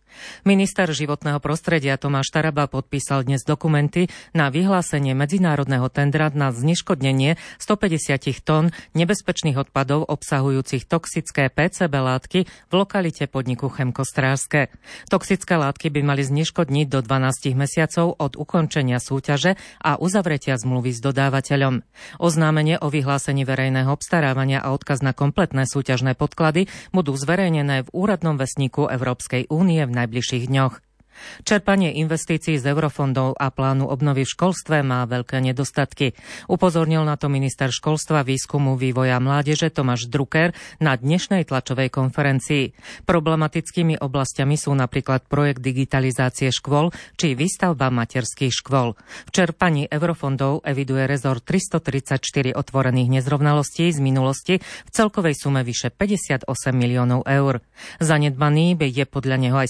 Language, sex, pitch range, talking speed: Slovak, female, 135-160 Hz, 125 wpm